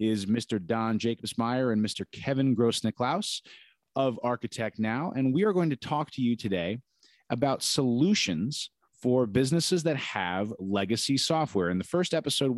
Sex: male